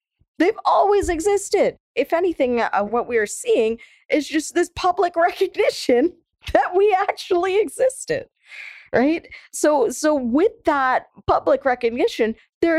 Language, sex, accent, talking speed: English, female, American, 125 wpm